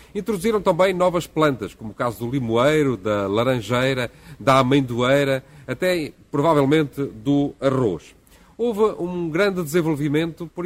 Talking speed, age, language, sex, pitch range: 125 wpm, 40-59, Portuguese, male, 130-165 Hz